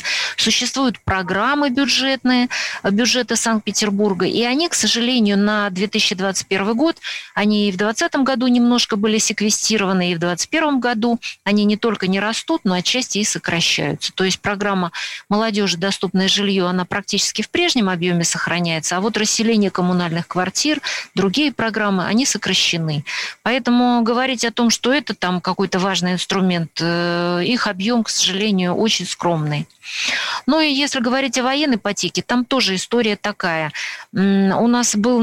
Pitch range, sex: 185-230 Hz, female